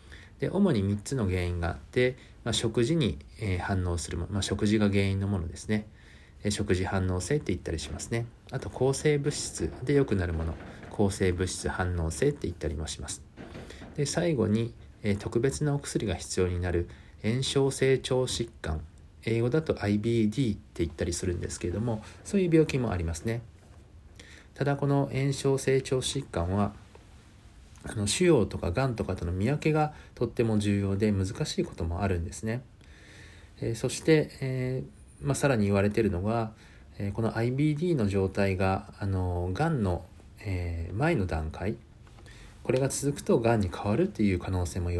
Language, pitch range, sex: Japanese, 90-120 Hz, male